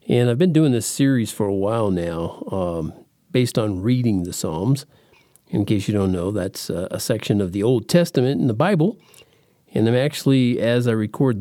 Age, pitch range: 50-69, 105-145 Hz